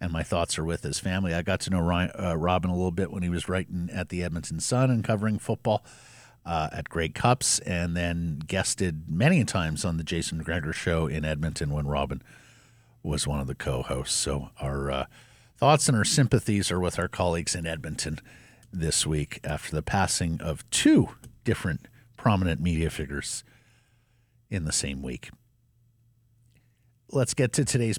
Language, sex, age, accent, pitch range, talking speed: English, male, 50-69, American, 90-120 Hz, 175 wpm